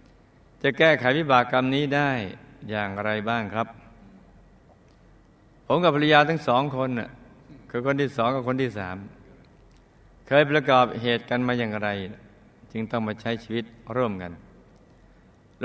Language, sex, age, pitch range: Thai, male, 60-79, 115-150 Hz